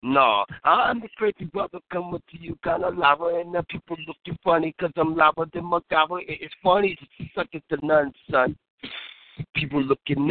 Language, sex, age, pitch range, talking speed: English, male, 60-79, 150-215 Hz, 175 wpm